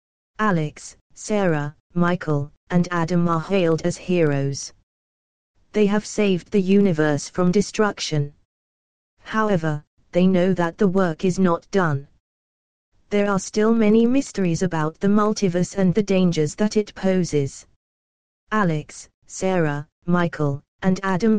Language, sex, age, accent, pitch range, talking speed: English, female, 20-39, British, 165-205 Hz, 125 wpm